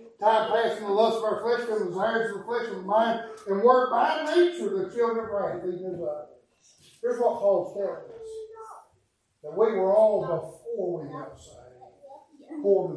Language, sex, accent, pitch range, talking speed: English, male, American, 185-270 Hz, 180 wpm